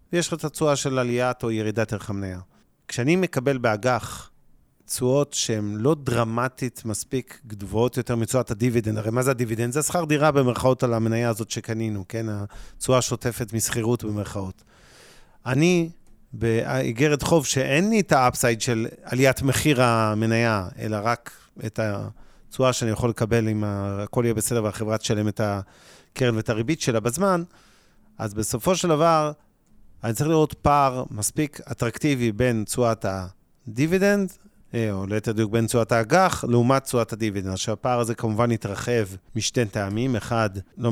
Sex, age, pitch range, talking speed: male, 40-59, 110-130 Hz, 150 wpm